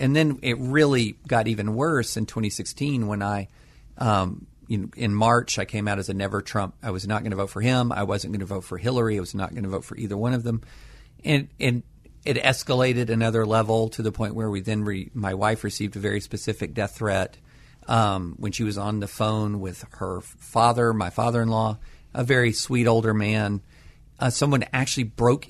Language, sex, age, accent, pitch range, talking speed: English, male, 50-69, American, 105-130 Hz, 205 wpm